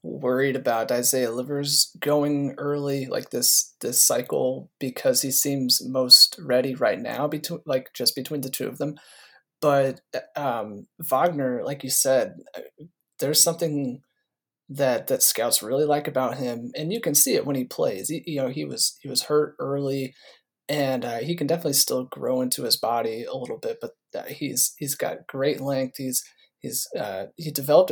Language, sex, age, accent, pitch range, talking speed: English, male, 30-49, American, 130-155 Hz, 175 wpm